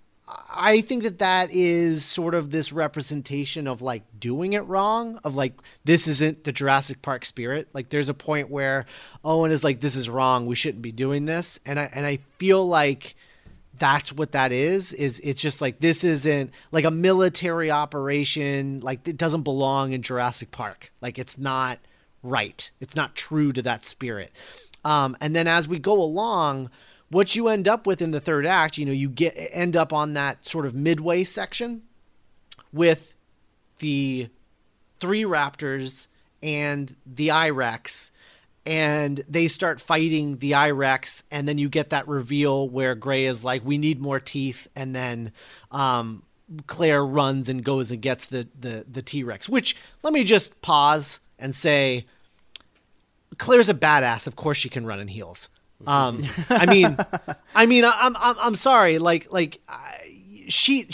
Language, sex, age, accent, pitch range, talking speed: English, male, 30-49, American, 135-175 Hz, 170 wpm